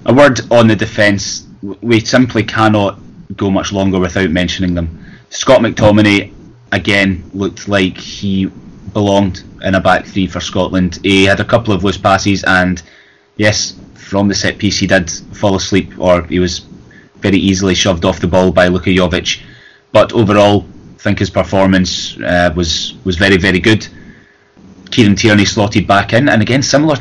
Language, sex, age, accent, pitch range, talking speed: English, male, 20-39, British, 95-110 Hz, 170 wpm